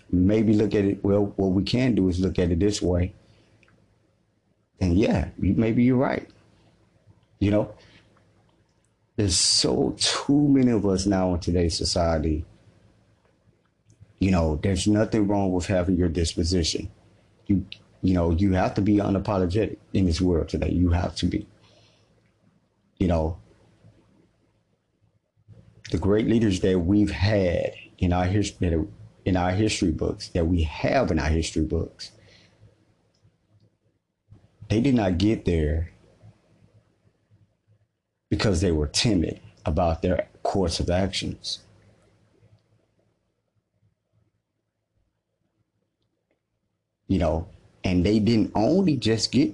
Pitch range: 90-110 Hz